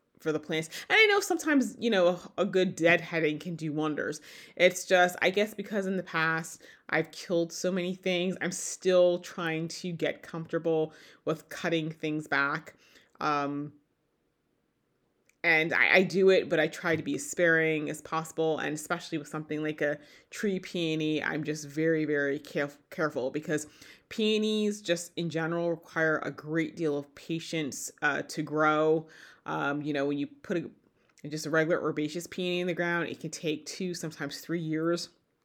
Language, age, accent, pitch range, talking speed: English, 30-49, American, 155-175 Hz, 175 wpm